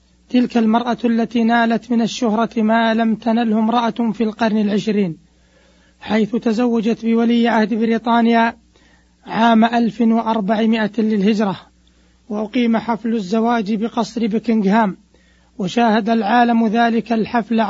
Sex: male